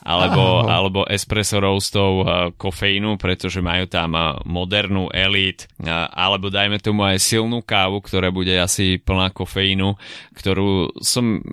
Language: Slovak